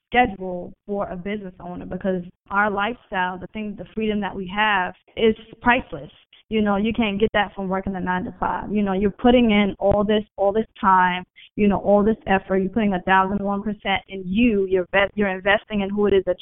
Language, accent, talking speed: English, American, 210 wpm